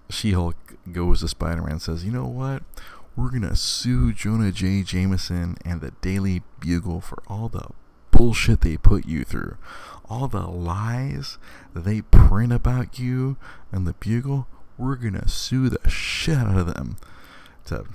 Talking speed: 160 wpm